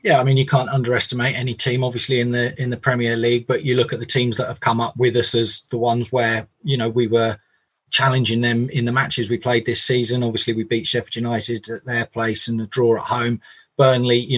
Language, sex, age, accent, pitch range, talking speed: English, male, 30-49, British, 115-130 Hz, 245 wpm